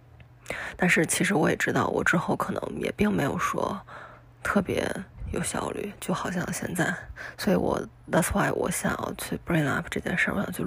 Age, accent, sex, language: 20-39, native, female, Chinese